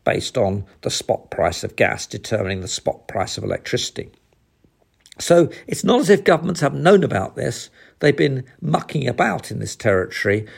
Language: English